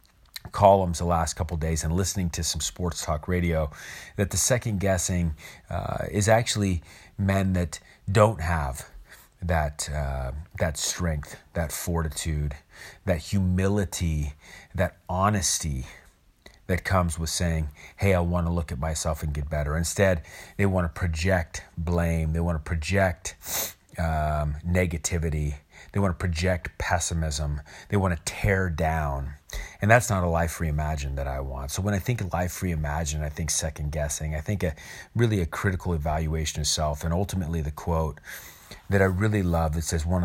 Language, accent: English, American